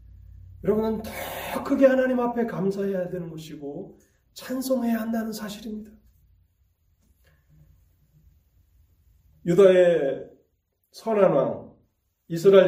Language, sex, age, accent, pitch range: Korean, male, 30-49, native, 135-210 Hz